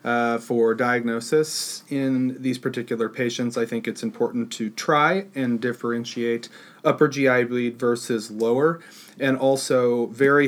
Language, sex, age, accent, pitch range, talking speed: English, male, 40-59, American, 110-125 Hz, 130 wpm